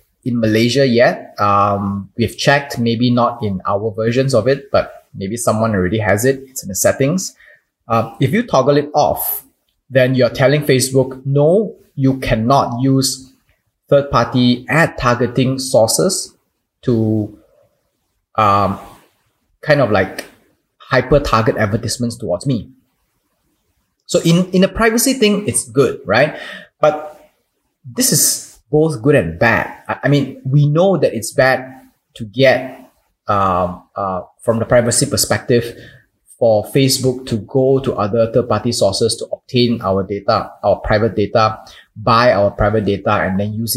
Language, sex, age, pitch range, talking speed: English, male, 20-39, 110-140 Hz, 145 wpm